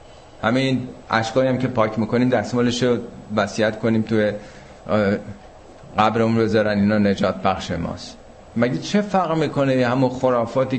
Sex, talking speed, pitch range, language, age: male, 135 wpm, 110-130 Hz, Persian, 50-69